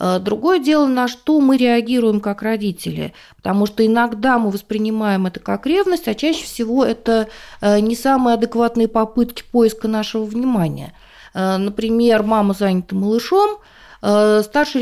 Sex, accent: female, native